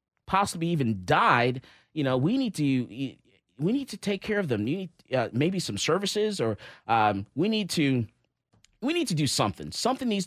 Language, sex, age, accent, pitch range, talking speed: English, male, 30-49, American, 150-210 Hz, 195 wpm